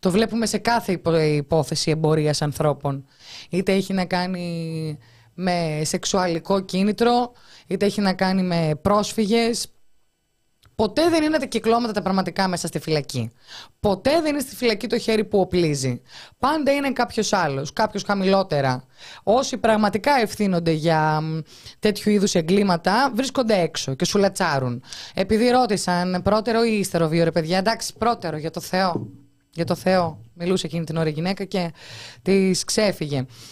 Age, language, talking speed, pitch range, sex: 20-39, Greek, 145 wpm, 165-220 Hz, female